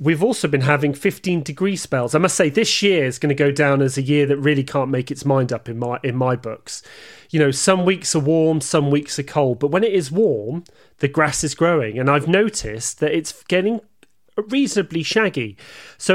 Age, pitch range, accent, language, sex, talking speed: 30-49, 140-185 Hz, British, English, male, 220 wpm